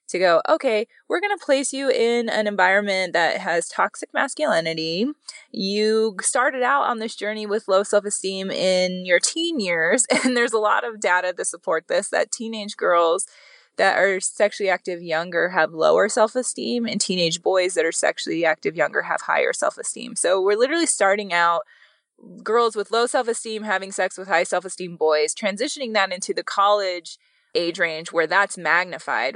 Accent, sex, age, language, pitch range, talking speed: American, female, 20-39, English, 170-230 Hz, 170 wpm